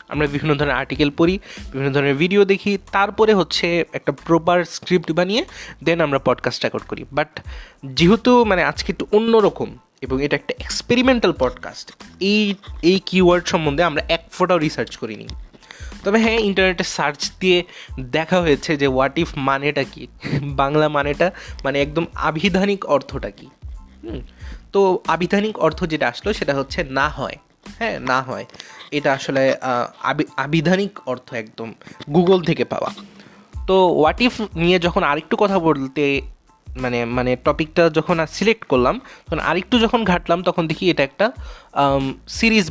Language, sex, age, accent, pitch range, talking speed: Bengali, male, 20-39, native, 140-185 Hz, 120 wpm